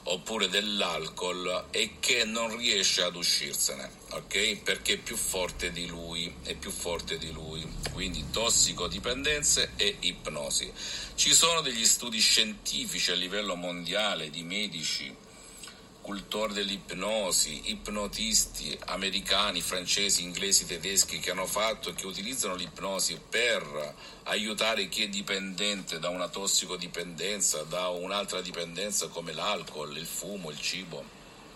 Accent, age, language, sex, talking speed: native, 50-69, Italian, male, 125 wpm